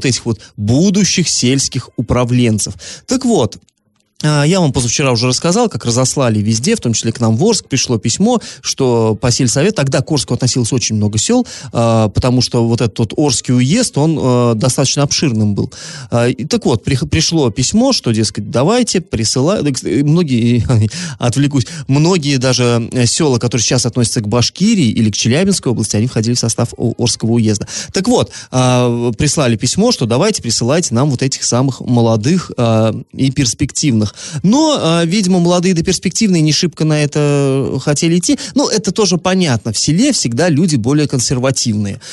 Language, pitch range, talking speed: Russian, 115-175 Hz, 160 wpm